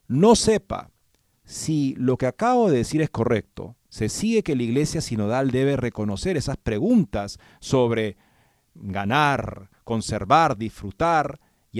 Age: 40-59